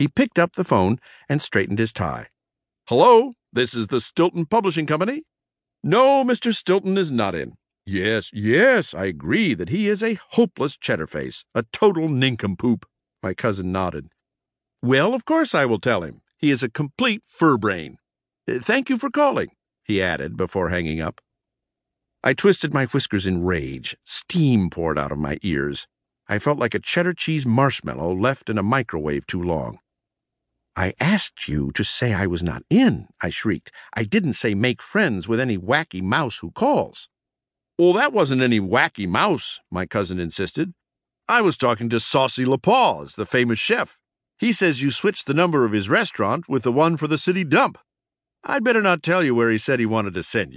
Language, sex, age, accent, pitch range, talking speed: English, male, 50-69, American, 105-175 Hz, 180 wpm